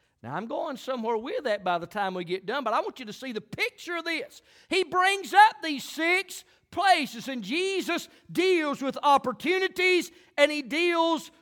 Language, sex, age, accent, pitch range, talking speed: English, male, 40-59, American, 260-320 Hz, 185 wpm